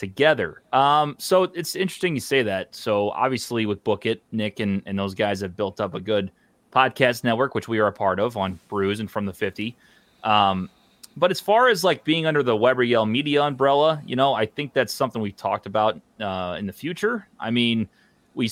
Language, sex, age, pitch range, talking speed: English, male, 30-49, 100-130 Hz, 215 wpm